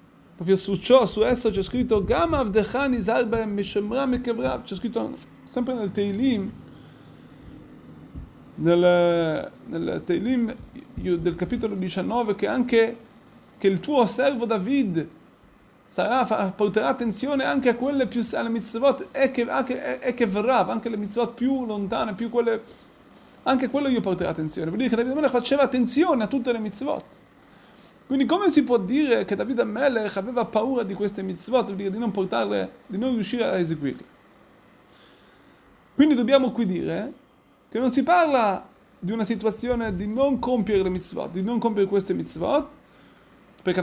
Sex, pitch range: male, 195-255 Hz